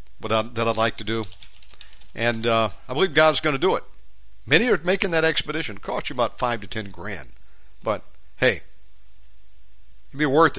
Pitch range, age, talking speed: 95-120 Hz, 60-79, 175 wpm